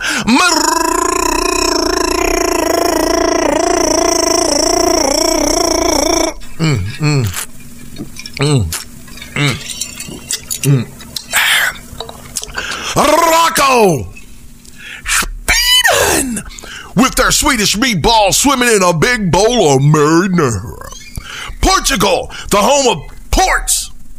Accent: American